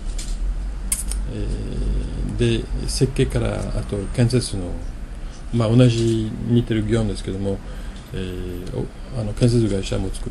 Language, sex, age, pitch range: Japanese, male, 40-59, 90-120 Hz